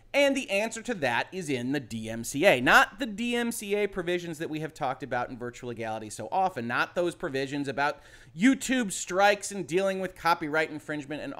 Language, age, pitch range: English, 30-49, 125-190 Hz